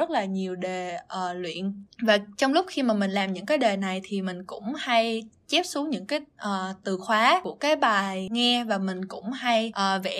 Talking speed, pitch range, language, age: 205 wpm, 195-260 Hz, Vietnamese, 20-39